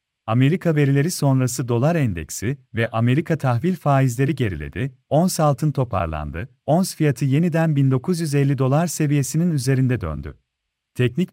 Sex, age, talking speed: male, 40-59, 115 wpm